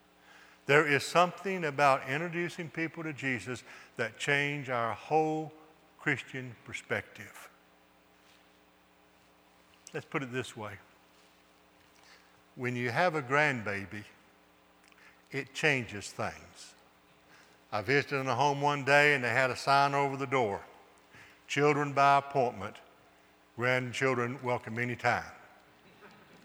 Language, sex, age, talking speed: English, male, 60-79, 110 wpm